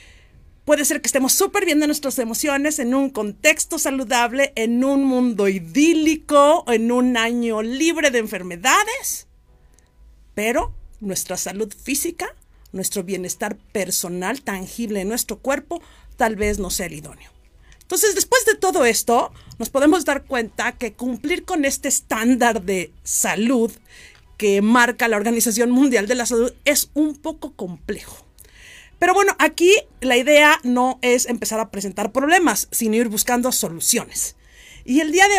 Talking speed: 145 wpm